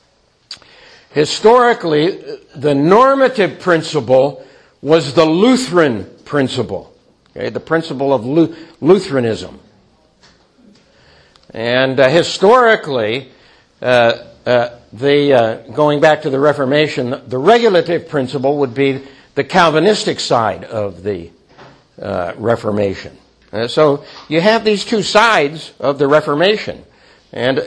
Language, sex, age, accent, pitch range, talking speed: English, male, 60-79, American, 125-170 Hz, 105 wpm